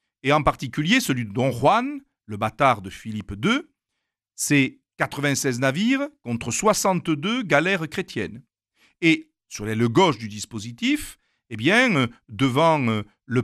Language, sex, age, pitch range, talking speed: French, male, 50-69, 125-200 Hz, 130 wpm